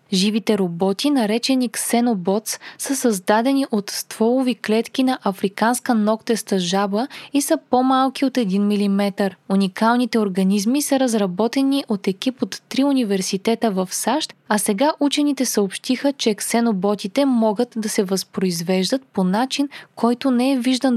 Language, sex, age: Bulgarian, female, 20-39